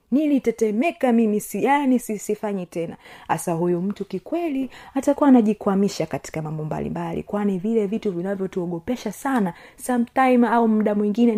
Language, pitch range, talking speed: Swahili, 190-230 Hz, 120 wpm